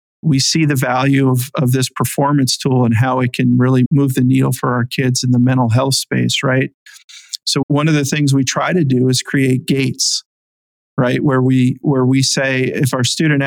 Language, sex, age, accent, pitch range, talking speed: English, male, 40-59, American, 125-145 Hz, 210 wpm